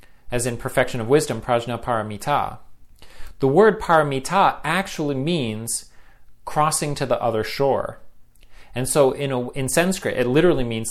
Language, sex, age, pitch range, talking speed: English, male, 40-59, 115-145 Hz, 145 wpm